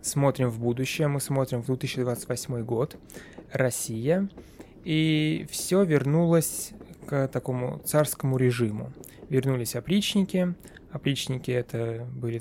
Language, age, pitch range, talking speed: Russian, 20-39, 120-150 Hz, 100 wpm